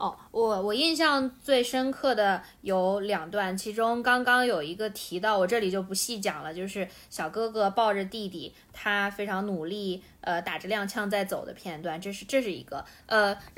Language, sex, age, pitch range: Chinese, female, 20-39, 195-255 Hz